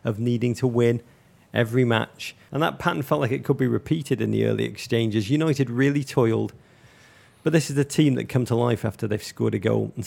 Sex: male